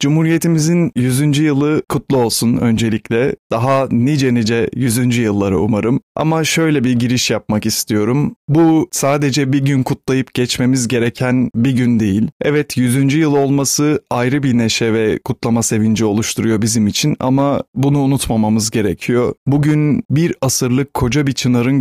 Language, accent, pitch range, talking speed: Turkish, native, 115-140 Hz, 140 wpm